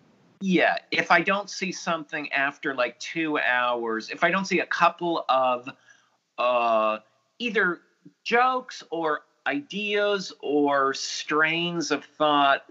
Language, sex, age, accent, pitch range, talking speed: English, male, 40-59, American, 125-160 Hz, 125 wpm